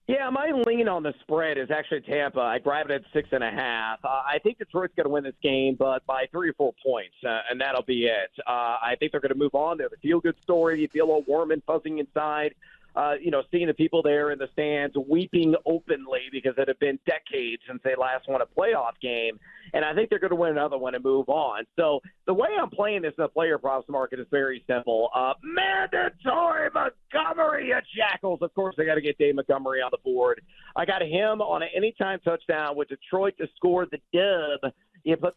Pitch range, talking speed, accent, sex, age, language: 140-185 Hz, 235 wpm, American, male, 40-59, English